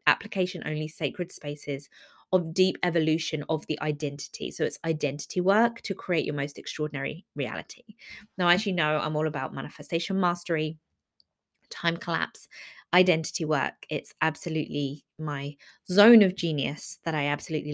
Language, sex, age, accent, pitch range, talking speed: English, female, 20-39, British, 155-195 Hz, 140 wpm